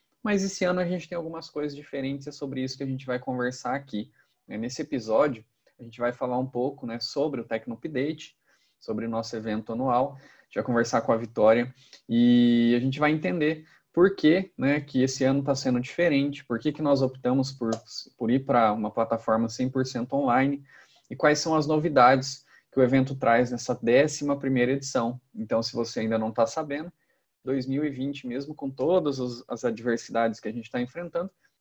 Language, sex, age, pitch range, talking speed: Portuguese, male, 20-39, 120-150 Hz, 190 wpm